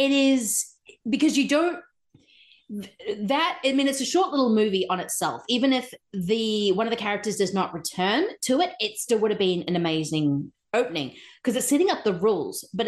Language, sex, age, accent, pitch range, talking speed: English, female, 30-49, Australian, 170-225 Hz, 195 wpm